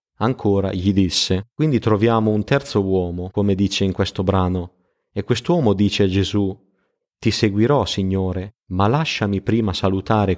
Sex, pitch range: male, 95-110 Hz